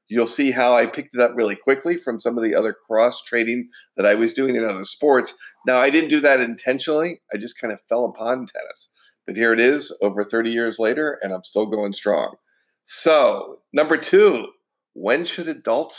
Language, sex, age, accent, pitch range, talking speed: English, male, 50-69, American, 115-145 Hz, 205 wpm